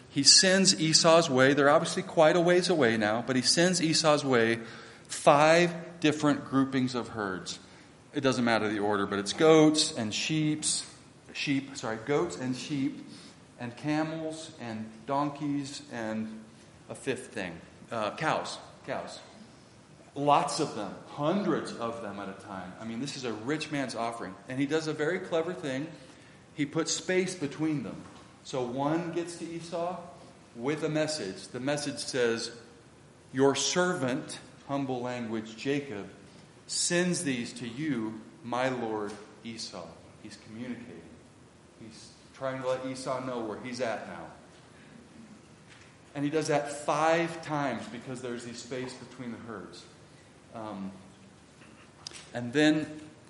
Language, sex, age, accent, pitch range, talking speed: English, male, 40-59, American, 115-155 Hz, 145 wpm